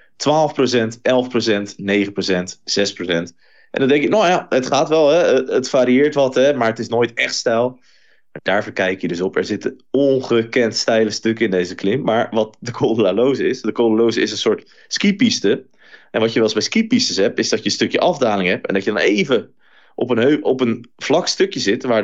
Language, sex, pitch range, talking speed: Dutch, male, 100-145 Hz, 210 wpm